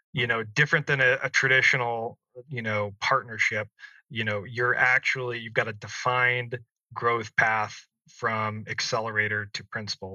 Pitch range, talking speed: 110-125 Hz, 140 wpm